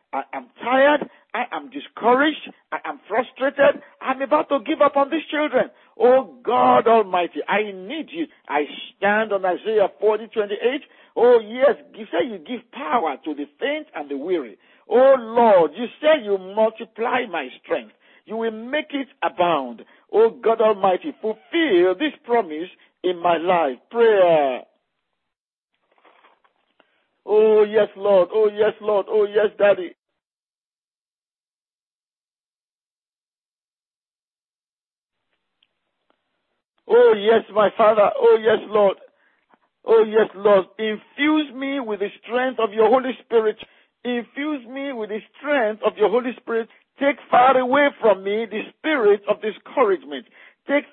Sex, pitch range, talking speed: male, 210-285 Hz, 125 wpm